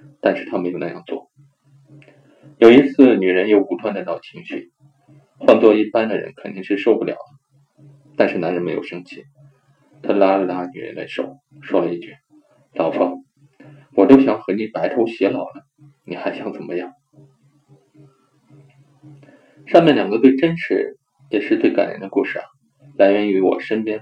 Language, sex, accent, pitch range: Chinese, male, native, 130-145 Hz